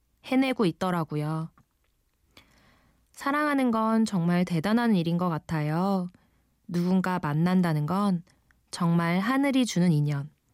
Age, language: 20-39, Korean